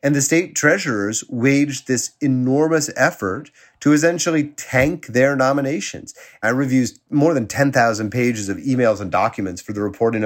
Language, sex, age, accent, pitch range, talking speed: English, male, 30-49, American, 120-155 Hz, 150 wpm